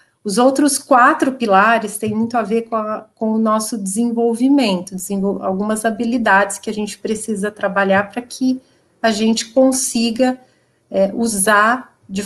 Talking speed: 130 wpm